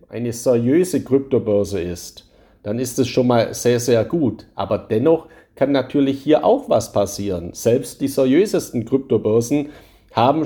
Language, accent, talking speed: German, German, 145 wpm